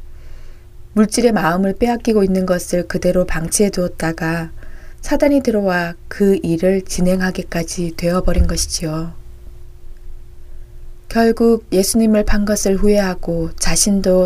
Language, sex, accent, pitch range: Korean, female, native, 165-210 Hz